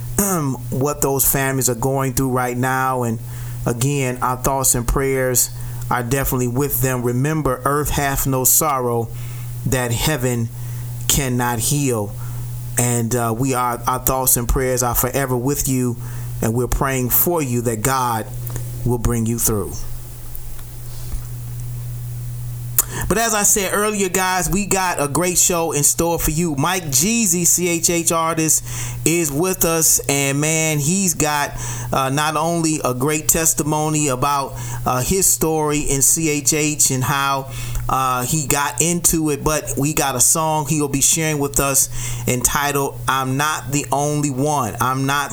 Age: 30-49